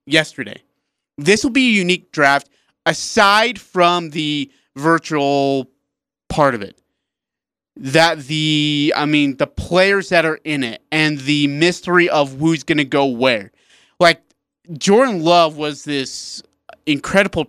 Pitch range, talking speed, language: 135-170 Hz, 130 wpm, English